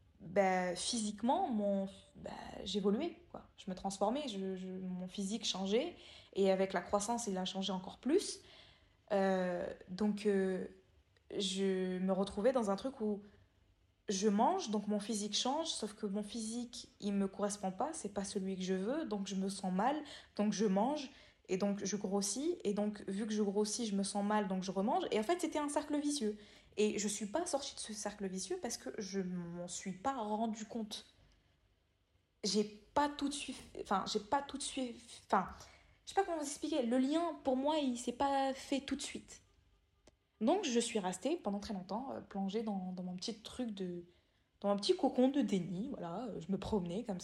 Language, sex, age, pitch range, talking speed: French, female, 20-39, 195-250 Hz, 200 wpm